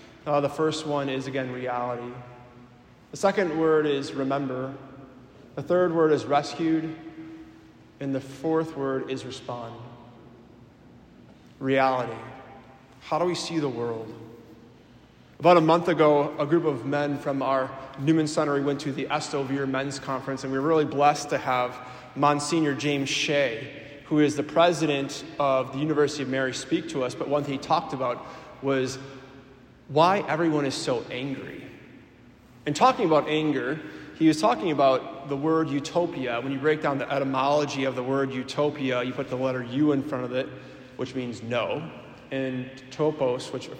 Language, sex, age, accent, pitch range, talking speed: English, male, 30-49, American, 130-150 Hz, 165 wpm